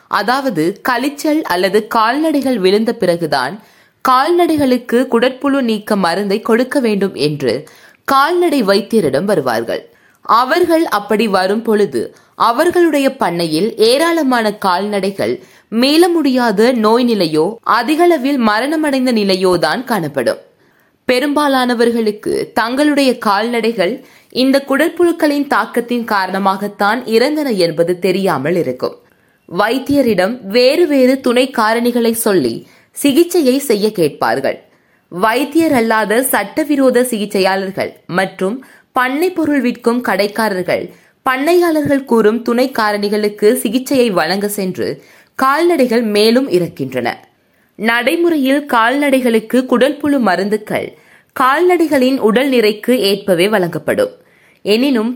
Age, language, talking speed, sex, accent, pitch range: 20-39, Tamil, 85 wpm, female, native, 205-280 Hz